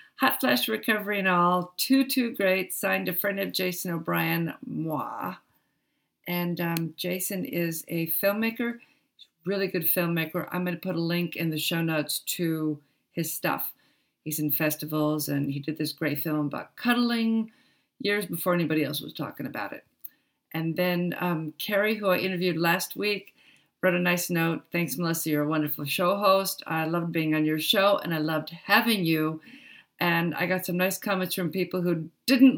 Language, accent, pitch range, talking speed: English, American, 160-200 Hz, 180 wpm